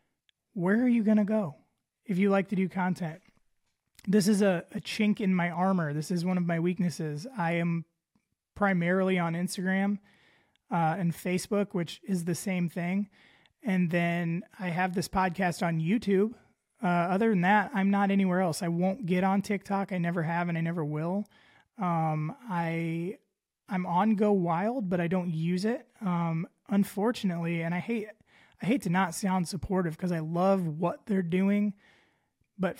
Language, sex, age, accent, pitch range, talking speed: English, male, 20-39, American, 165-195 Hz, 180 wpm